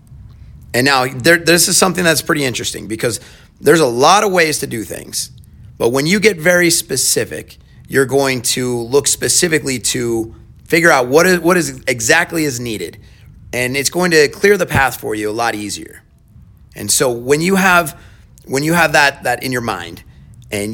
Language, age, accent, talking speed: English, 30-49, American, 190 wpm